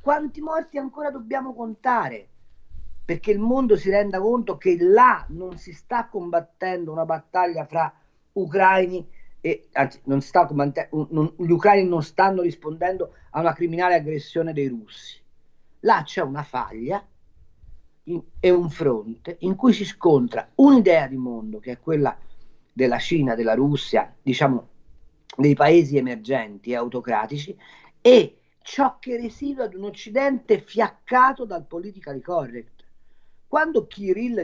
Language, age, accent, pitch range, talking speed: Italian, 40-59, native, 150-235 Hz, 135 wpm